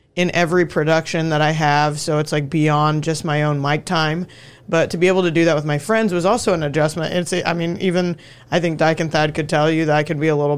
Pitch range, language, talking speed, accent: 150-170 Hz, English, 265 wpm, American